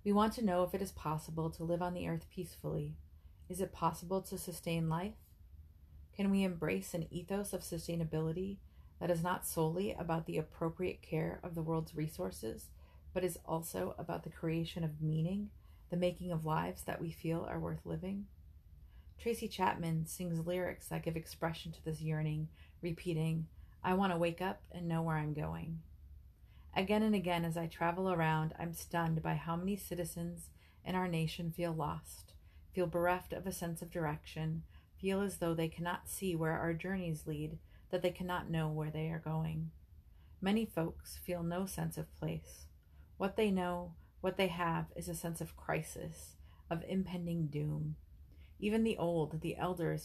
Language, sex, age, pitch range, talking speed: English, female, 30-49, 155-180 Hz, 175 wpm